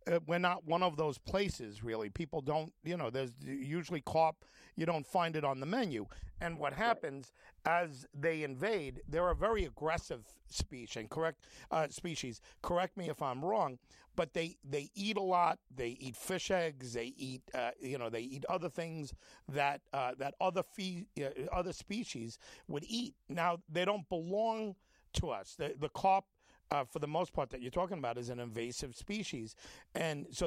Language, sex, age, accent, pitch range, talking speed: English, male, 50-69, American, 135-185 Hz, 185 wpm